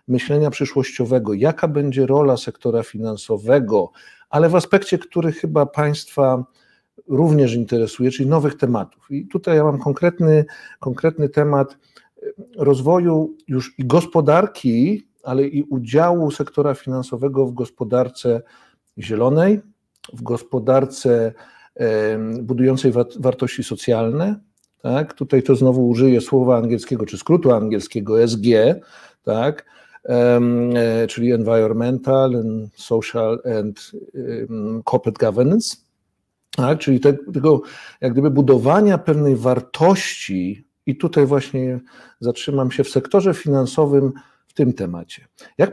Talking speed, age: 105 wpm, 50-69